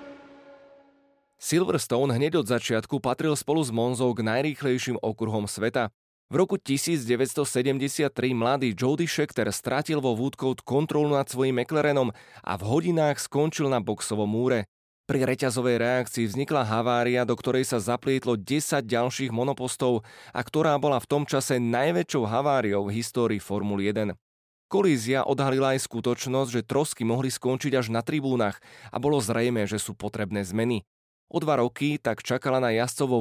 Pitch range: 115-145 Hz